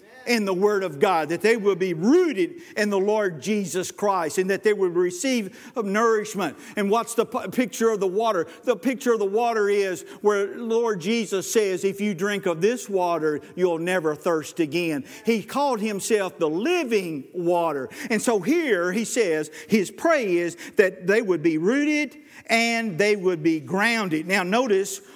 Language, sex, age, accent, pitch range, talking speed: English, male, 50-69, American, 175-230 Hz, 175 wpm